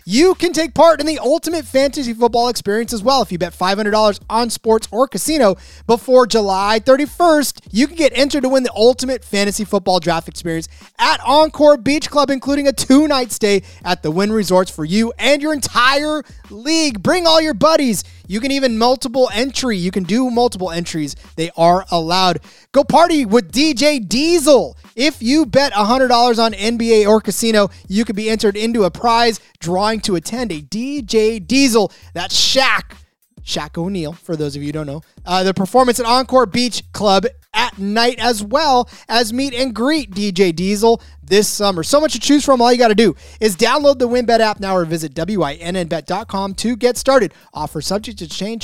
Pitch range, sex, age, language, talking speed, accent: 175-260 Hz, male, 20-39, English, 190 wpm, American